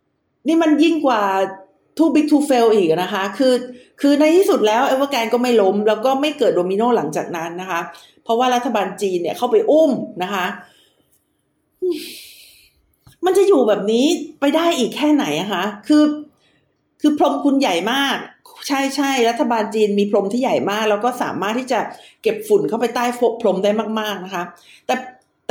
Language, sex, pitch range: Thai, female, 205-290 Hz